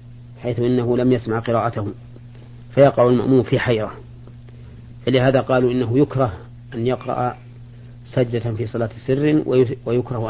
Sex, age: male, 40-59